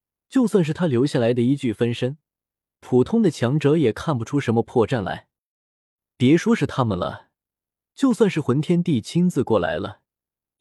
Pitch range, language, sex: 115-160 Hz, Chinese, male